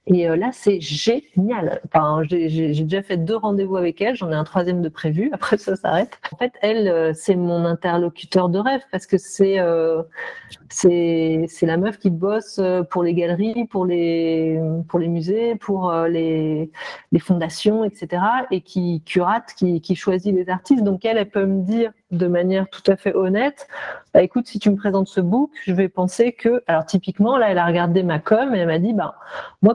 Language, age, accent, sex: French, 40-59, French, female